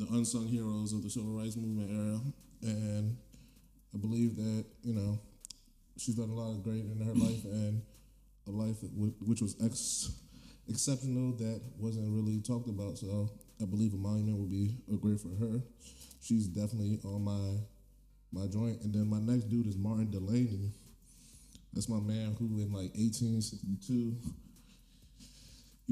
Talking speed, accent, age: 160 wpm, American, 20-39